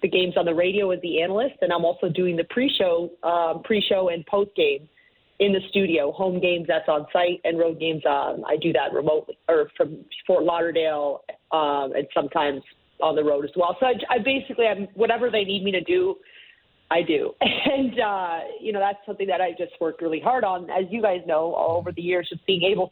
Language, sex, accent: English, female, American